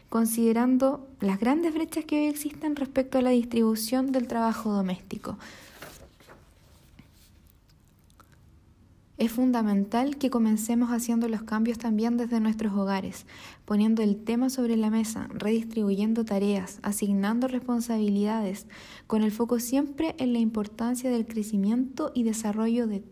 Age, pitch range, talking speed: 10-29, 205-245 Hz, 120 wpm